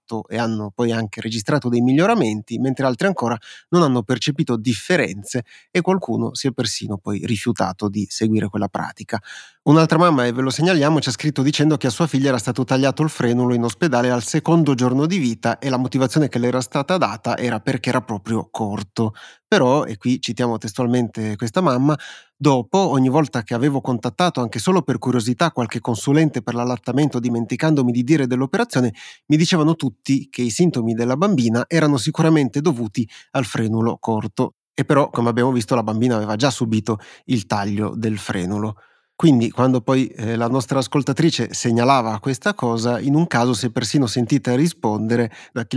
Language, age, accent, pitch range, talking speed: Italian, 30-49, native, 115-140 Hz, 180 wpm